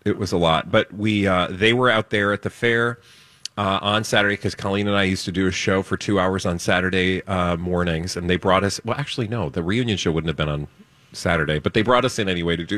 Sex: male